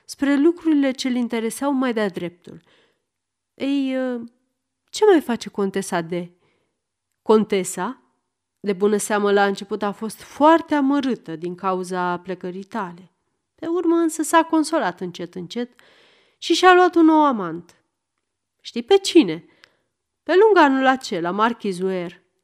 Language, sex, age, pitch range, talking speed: Romanian, female, 30-49, 185-270 Hz, 130 wpm